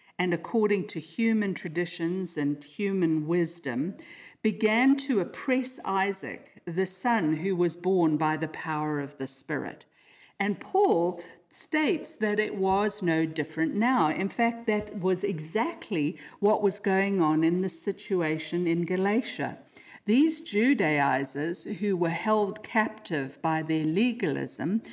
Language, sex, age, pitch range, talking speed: English, female, 50-69, 160-215 Hz, 130 wpm